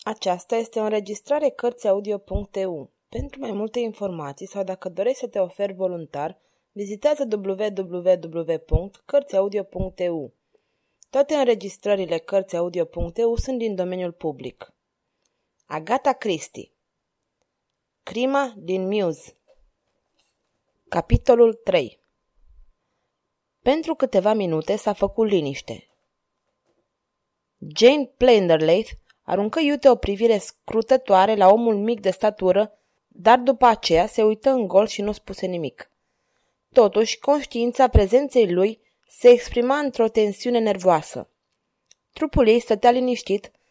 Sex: female